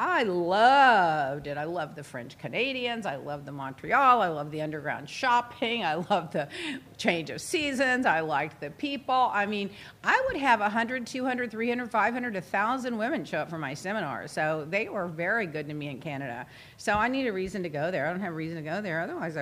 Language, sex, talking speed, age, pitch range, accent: English, female, 215 wpm, 50-69, 150-205 Hz, American